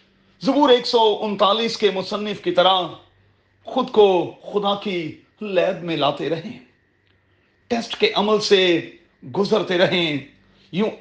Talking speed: 125 wpm